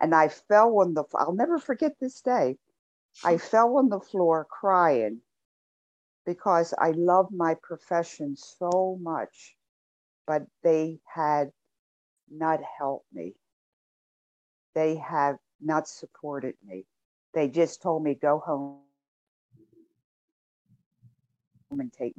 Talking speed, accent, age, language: 115 wpm, American, 50-69, English